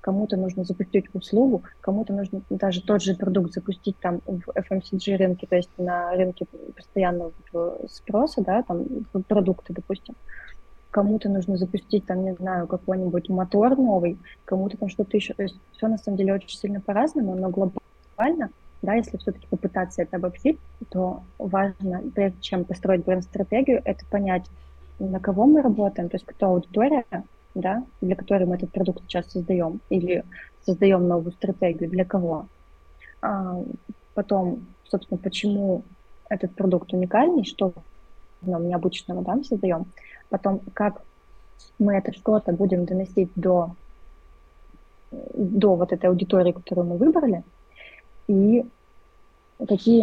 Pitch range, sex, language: 180-205 Hz, female, Russian